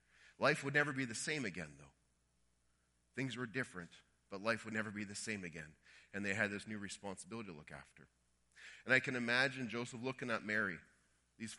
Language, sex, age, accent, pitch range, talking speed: English, male, 30-49, American, 80-125 Hz, 190 wpm